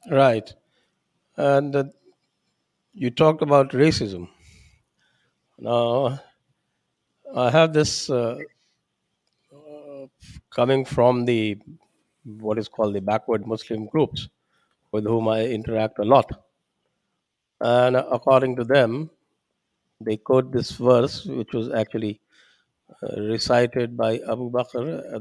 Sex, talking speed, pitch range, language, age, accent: male, 110 wpm, 110-140 Hz, English, 50-69, Indian